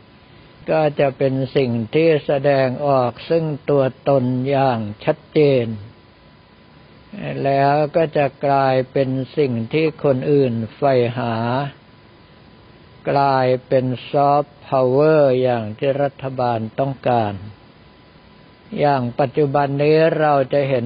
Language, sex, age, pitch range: Thai, male, 60-79, 125-145 Hz